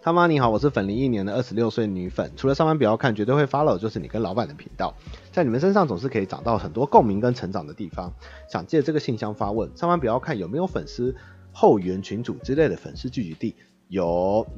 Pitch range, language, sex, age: 95-135 Hz, Chinese, male, 30-49